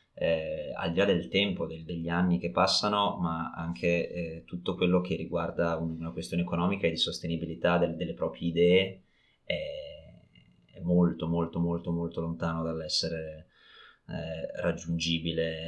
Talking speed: 135 wpm